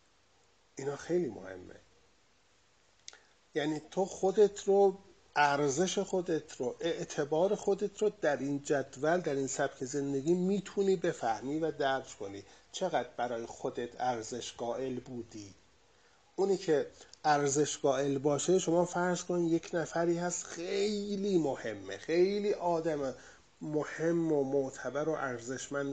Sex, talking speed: male, 115 wpm